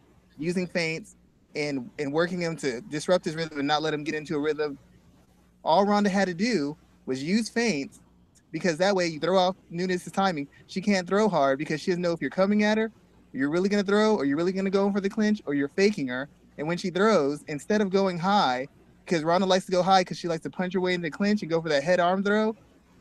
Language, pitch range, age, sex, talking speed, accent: English, 155-200 Hz, 30-49, male, 250 wpm, American